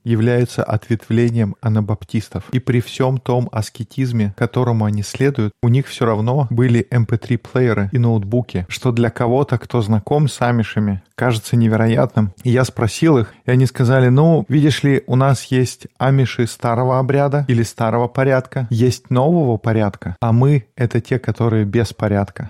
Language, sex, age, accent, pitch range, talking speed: Russian, male, 20-39, native, 110-130 Hz, 150 wpm